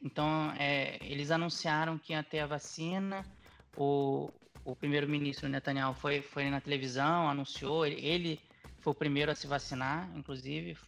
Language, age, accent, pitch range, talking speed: Portuguese, 20-39, Brazilian, 140-165 Hz, 155 wpm